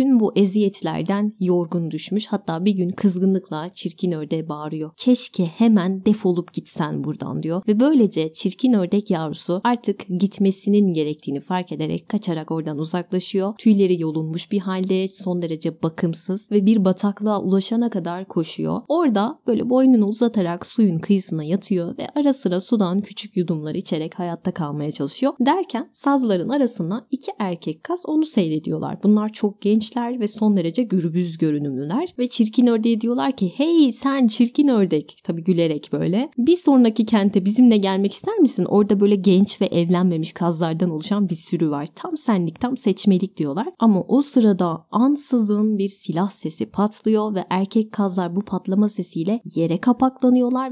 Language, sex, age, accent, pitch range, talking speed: Turkish, female, 30-49, native, 175-230 Hz, 150 wpm